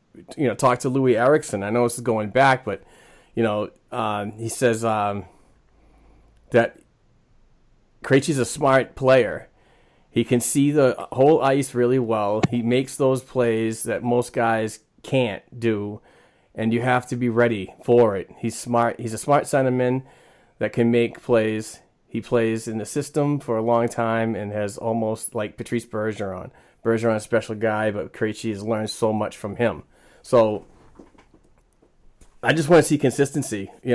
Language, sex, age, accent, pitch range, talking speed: English, male, 30-49, American, 110-130 Hz, 165 wpm